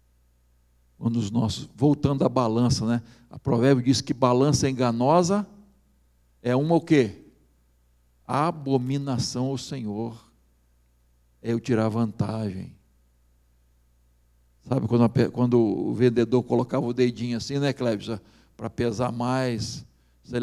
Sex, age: male, 60-79